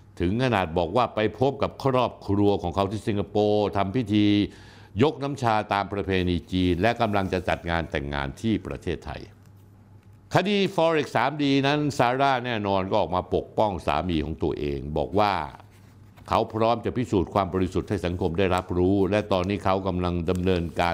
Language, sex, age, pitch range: Thai, male, 60-79, 95-115 Hz